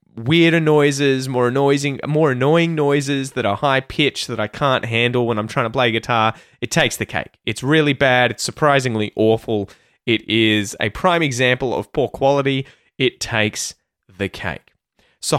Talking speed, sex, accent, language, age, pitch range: 165 wpm, male, Australian, English, 20-39, 110-145 Hz